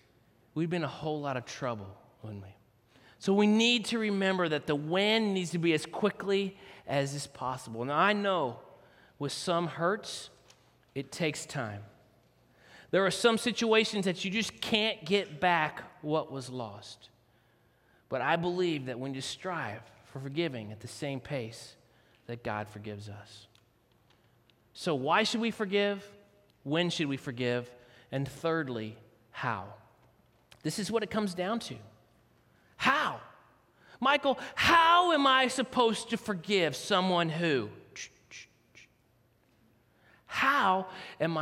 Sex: male